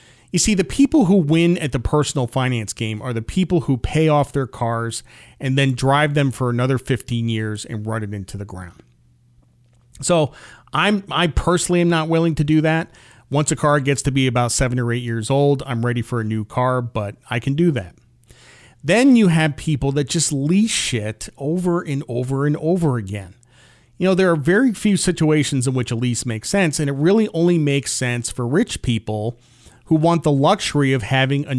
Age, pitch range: 40-59, 120-160 Hz